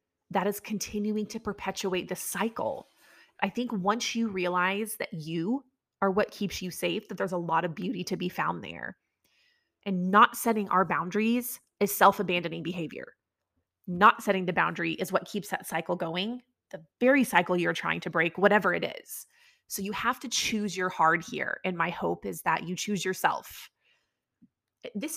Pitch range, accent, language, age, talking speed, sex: 180-220 Hz, American, English, 20-39, 175 wpm, female